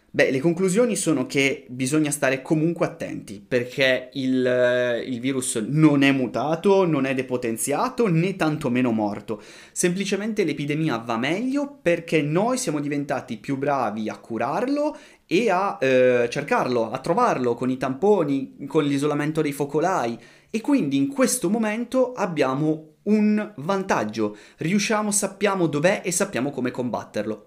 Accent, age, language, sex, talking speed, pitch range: native, 30-49, Italian, male, 135 wpm, 125-175 Hz